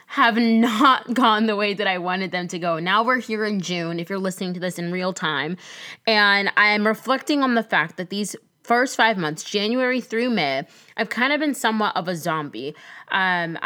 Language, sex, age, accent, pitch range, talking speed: English, female, 20-39, American, 185-245 Hz, 210 wpm